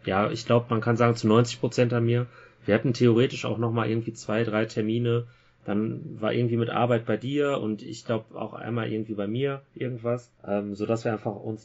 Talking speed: 210 wpm